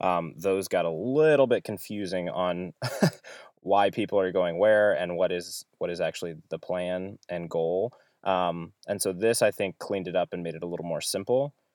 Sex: male